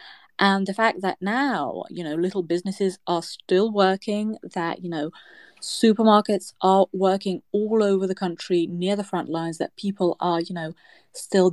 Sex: female